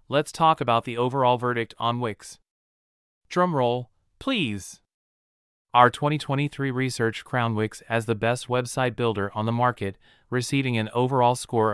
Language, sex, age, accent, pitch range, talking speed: English, male, 30-49, American, 110-135 Hz, 140 wpm